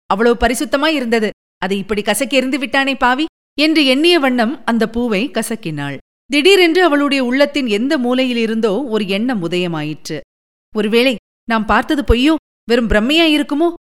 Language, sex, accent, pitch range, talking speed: Tamil, female, native, 220-290 Hz, 120 wpm